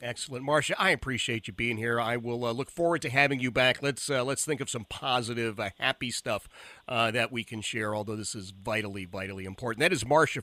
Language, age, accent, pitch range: English, 40-59, American, 105-140 Hz